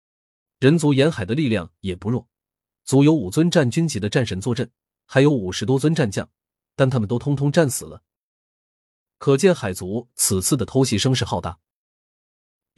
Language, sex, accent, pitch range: Chinese, male, native, 100-145 Hz